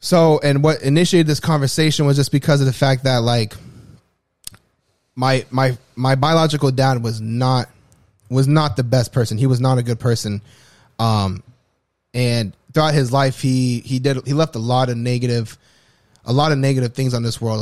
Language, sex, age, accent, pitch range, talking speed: English, male, 20-39, American, 115-135 Hz, 185 wpm